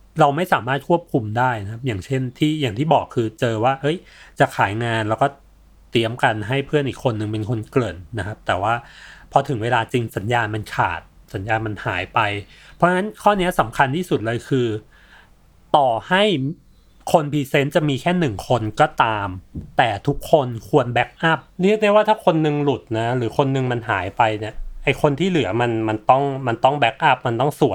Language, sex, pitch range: Thai, male, 110-150 Hz